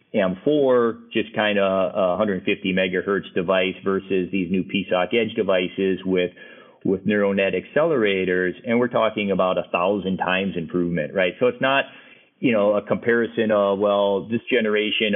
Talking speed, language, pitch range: 150 wpm, English, 90-110 Hz